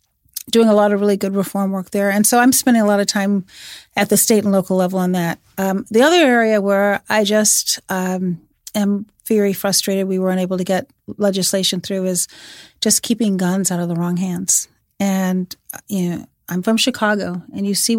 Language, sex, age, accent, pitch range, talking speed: English, female, 40-59, American, 195-245 Hz, 205 wpm